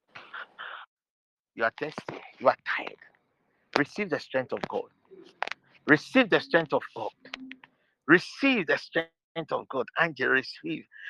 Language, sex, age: English, male, 50-69